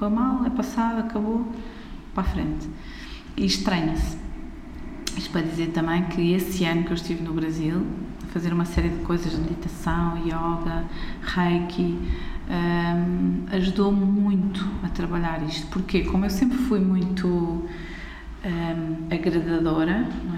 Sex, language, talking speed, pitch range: female, Portuguese, 130 wpm, 165-200 Hz